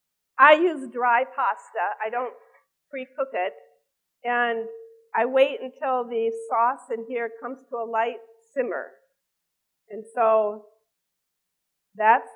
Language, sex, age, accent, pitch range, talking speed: English, female, 50-69, American, 220-270 Hz, 115 wpm